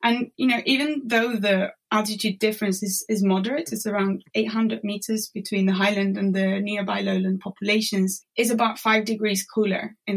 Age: 20-39